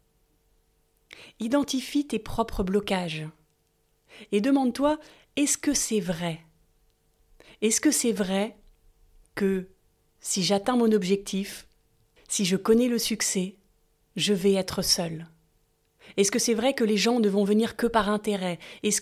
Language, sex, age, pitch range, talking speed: French, female, 30-49, 195-255 Hz, 135 wpm